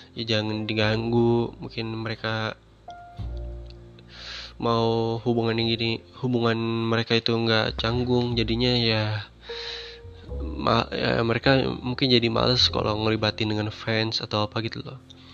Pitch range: 110-120 Hz